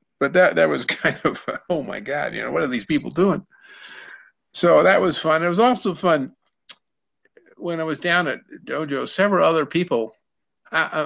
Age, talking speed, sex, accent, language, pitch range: 50-69, 185 wpm, male, American, English, 140-200 Hz